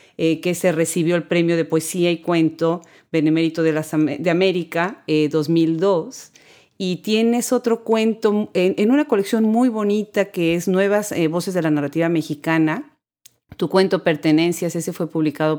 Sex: female